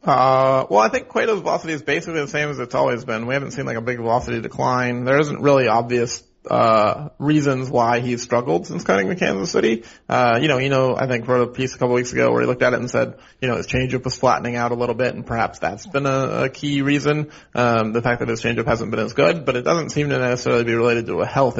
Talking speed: 265 wpm